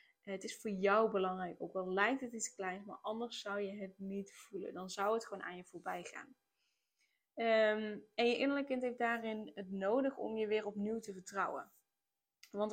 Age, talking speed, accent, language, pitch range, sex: 10-29, 195 wpm, Dutch, Dutch, 195-225 Hz, female